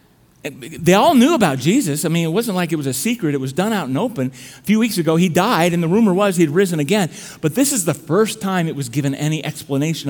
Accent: American